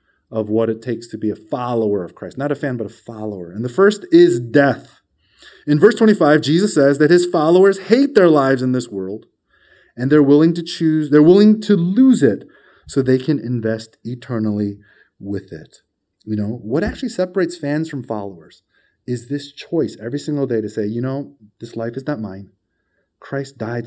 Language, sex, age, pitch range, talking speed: English, male, 30-49, 115-150 Hz, 195 wpm